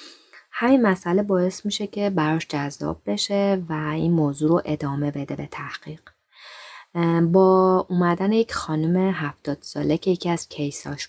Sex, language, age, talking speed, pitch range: female, Persian, 30-49, 140 wpm, 150-185 Hz